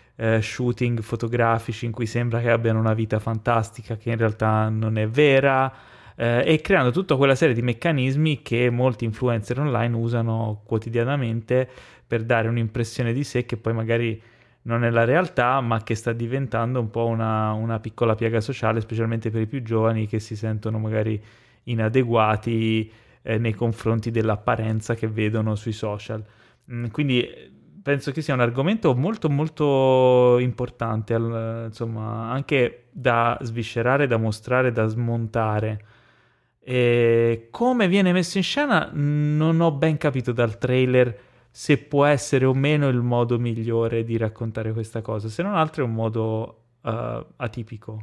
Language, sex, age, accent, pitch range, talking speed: Italian, male, 20-39, native, 115-130 Hz, 150 wpm